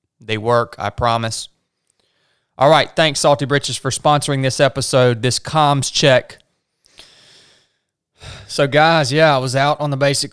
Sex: male